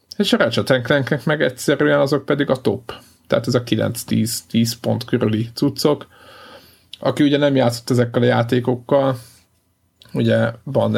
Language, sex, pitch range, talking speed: Hungarian, male, 110-130 Hz, 135 wpm